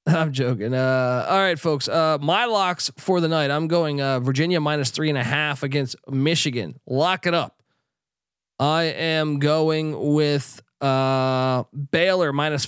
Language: English